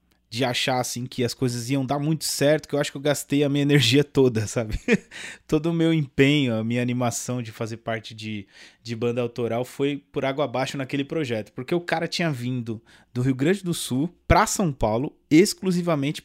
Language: Portuguese